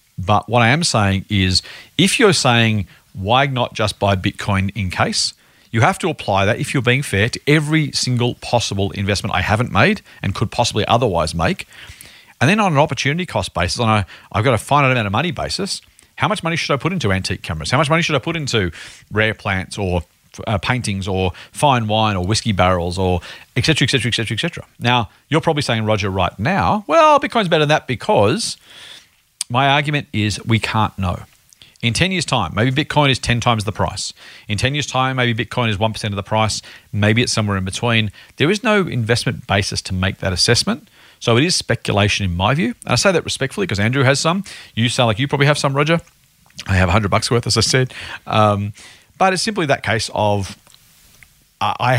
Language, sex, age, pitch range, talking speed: English, male, 40-59, 100-140 Hz, 215 wpm